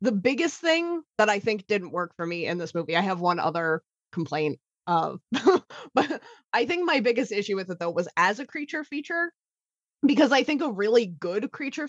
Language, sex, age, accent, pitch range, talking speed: English, female, 20-39, American, 185-280 Hz, 200 wpm